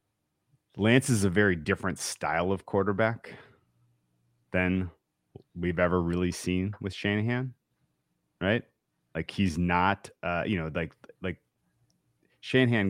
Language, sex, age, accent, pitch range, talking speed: English, male, 30-49, American, 80-100 Hz, 115 wpm